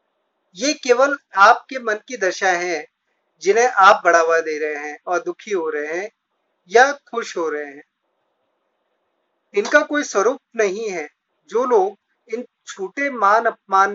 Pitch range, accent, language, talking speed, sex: 180-270 Hz, native, Hindi, 145 wpm, male